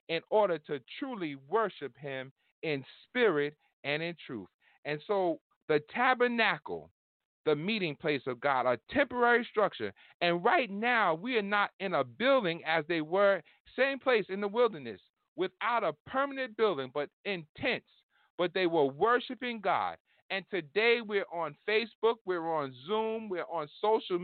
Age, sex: 40-59, male